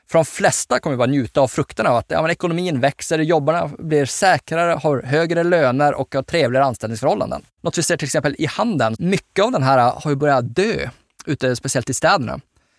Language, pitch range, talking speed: Swedish, 130-160 Hz, 200 wpm